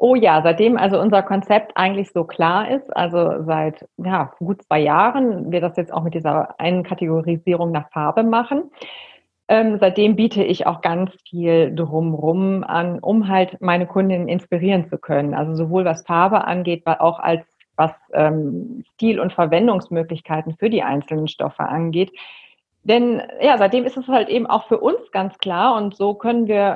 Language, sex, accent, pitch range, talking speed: German, female, German, 170-220 Hz, 175 wpm